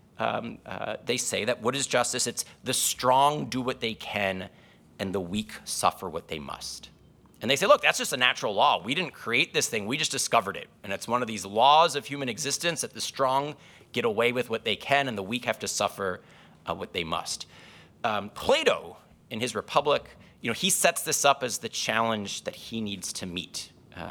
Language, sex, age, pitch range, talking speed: English, male, 30-49, 100-135 Hz, 220 wpm